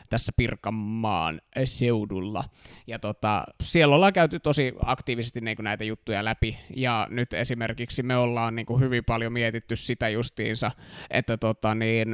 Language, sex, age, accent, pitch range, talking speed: Finnish, male, 20-39, native, 115-130 Hz, 115 wpm